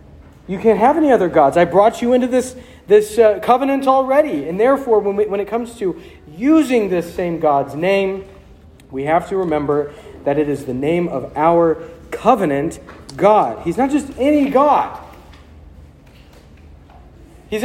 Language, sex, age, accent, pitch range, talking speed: English, male, 40-59, American, 140-210 Hz, 160 wpm